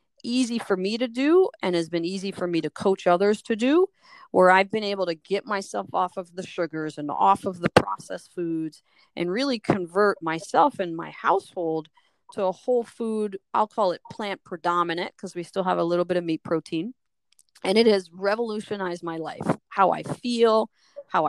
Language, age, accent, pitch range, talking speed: English, 40-59, American, 170-210 Hz, 195 wpm